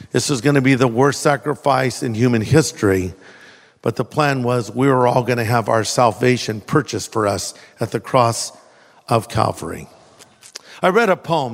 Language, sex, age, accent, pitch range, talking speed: English, male, 50-69, American, 130-195 Hz, 170 wpm